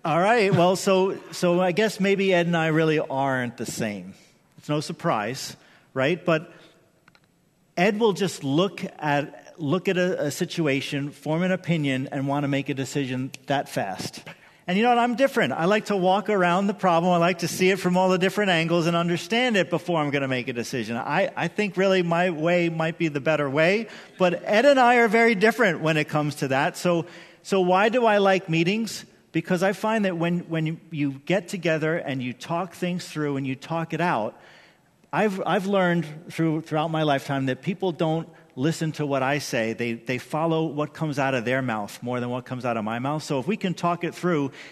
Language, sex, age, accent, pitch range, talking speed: English, male, 40-59, American, 145-185 Hz, 215 wpm